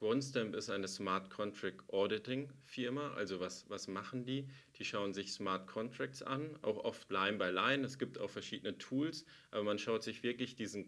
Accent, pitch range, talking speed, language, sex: German, 95-125 Hz, 190 wpm, German, male